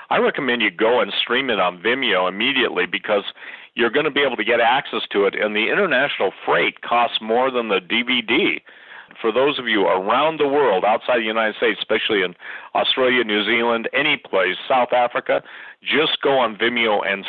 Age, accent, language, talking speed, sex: 50-69, American, English, 185 wpm, male